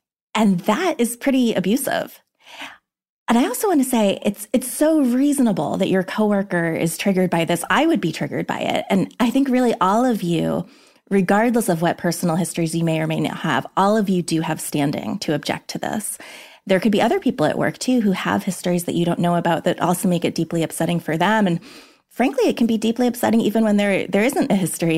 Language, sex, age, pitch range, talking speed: English, female, 20-39, 170-225 Hz, 225 wpm